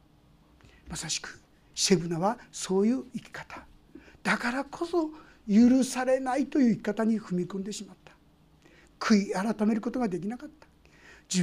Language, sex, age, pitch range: Japanese, male, 60-79, 205-265 Hz